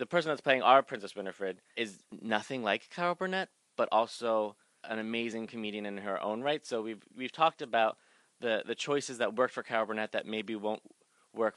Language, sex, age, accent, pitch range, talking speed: English, male, 20-39, American, 105-125 Hz, 195 wpm